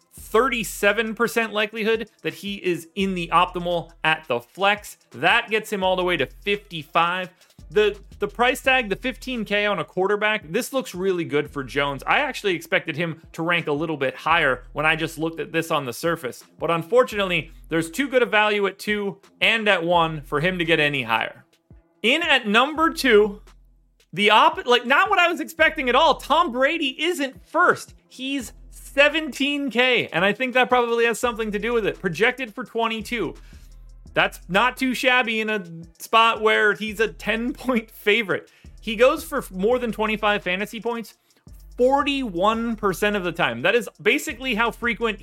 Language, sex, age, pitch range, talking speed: English, male, 30-49, 170-240 Hz, 180 wpm